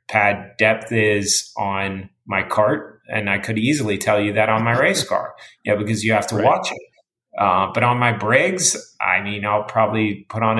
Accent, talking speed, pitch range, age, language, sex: American, 210 wpm, 105-130 Hz, 30-49, English, male